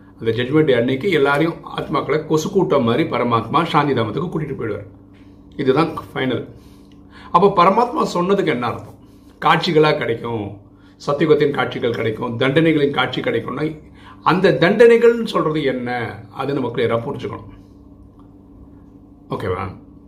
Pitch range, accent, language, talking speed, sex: 95-155 Hz, native, Tamil, 95 wpm, male